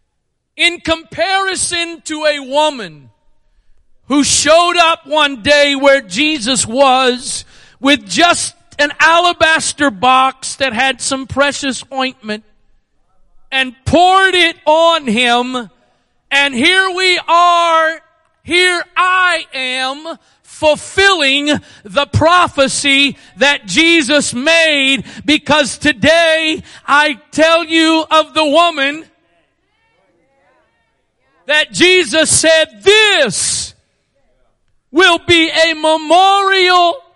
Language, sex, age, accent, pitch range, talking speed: English, male, 40-59, American, 260-325 Hz, 90 wpm